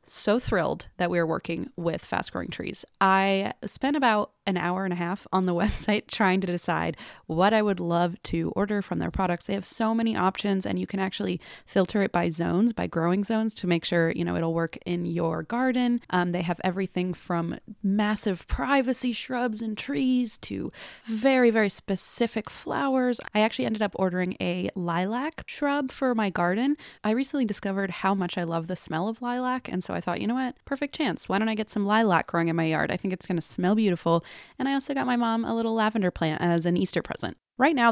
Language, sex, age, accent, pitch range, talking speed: English, female, 20-39, American, 175-225 Hz, 220 wpm